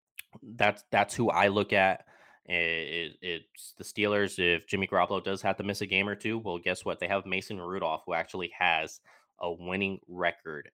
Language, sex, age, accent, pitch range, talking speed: English, male, 20-39, American, 90-100 Hz, 195 wpm